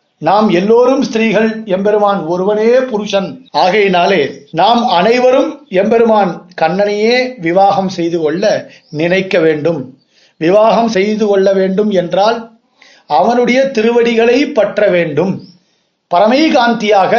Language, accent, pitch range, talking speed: Tamil, native, 170-225 Hz, 90 wpm